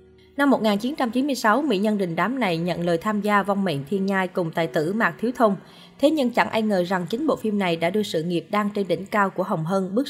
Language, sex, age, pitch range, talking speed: Vietnamese, female, 20-39, 180-230 Hz, 255 wpm